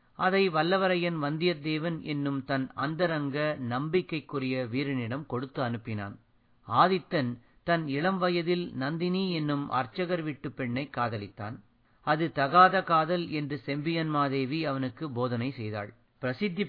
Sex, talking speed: male, 110 wpm